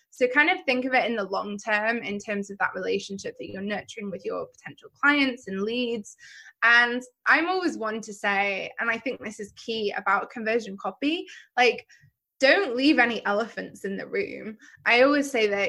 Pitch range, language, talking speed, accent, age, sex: 200-265 Hz, English, 195 wpm, British, 20-39, female